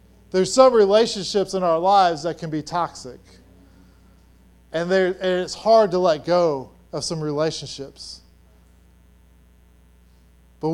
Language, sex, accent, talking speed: English, male, American, 125 wpm